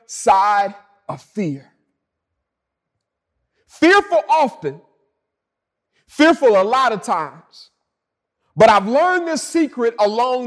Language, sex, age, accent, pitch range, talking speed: English, male, 40-59, American, 225-315 Hz, 90 wpm